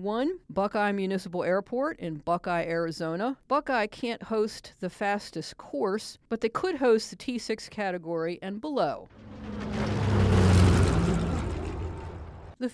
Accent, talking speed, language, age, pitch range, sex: American, 110 wpm, English, 50-69, 165-220 Hz, female